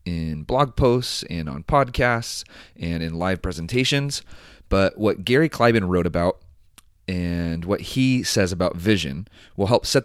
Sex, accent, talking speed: male, American, 150 wpm